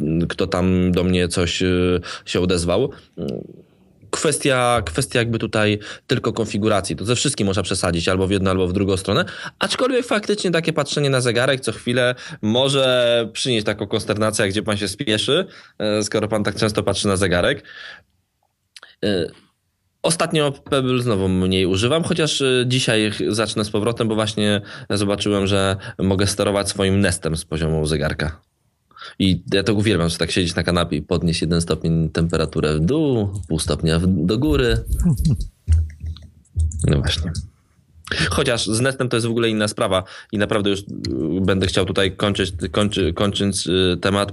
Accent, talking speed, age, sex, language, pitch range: native, 150 wpm, 20-39, male, Polish, 95-115 Hz